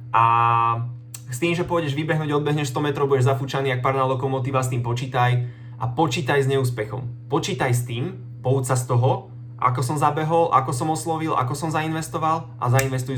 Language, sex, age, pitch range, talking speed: Slovak, male, 20-39, 120-135 Hz, 180 wpm